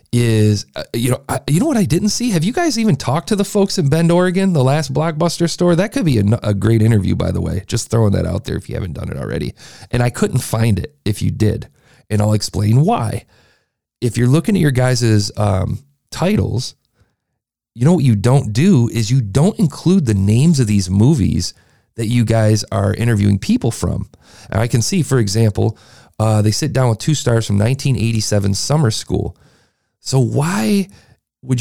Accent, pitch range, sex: American, 105-140 Hz, male